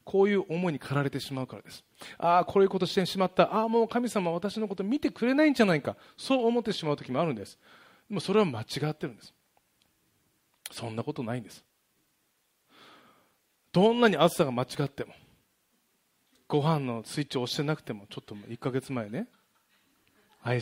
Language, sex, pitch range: Japanese, male, 125-185 Hz